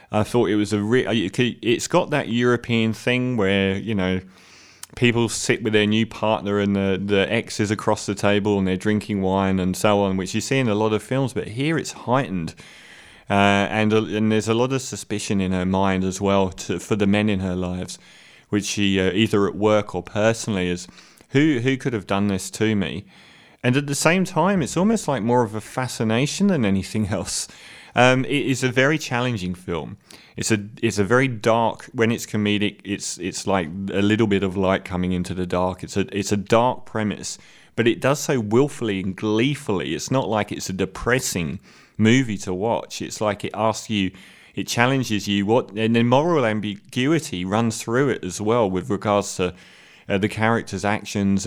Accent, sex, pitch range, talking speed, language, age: British, male, 100-120 Hz, 205 wpm, English, 30-49